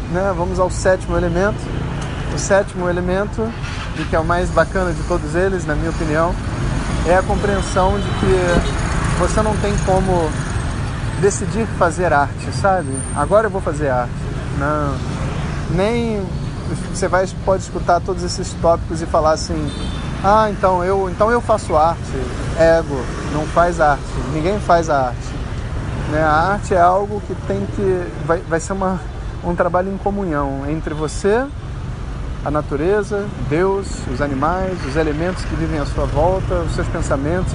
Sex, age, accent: male, 20-39, Brazilian